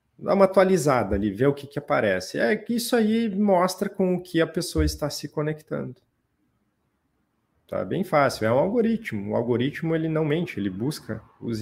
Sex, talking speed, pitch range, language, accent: male, 185 wpm, 115-155 Hz, Portuguese, Brazilian